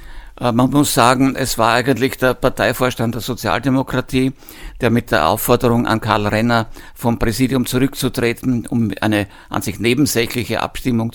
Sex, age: male, 60-79